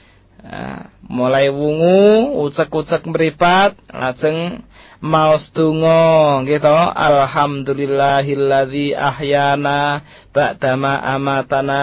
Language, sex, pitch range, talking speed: Malay, male, 125-150 Hz, 65 wpm